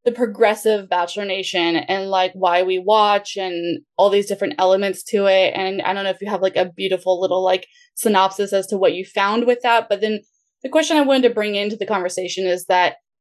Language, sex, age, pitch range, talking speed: English, female, 20-39, 190-235 Hz, 225 wpm